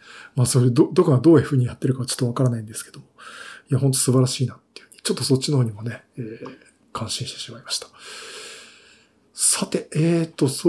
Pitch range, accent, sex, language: 125-155 Hz, native, male, Japanese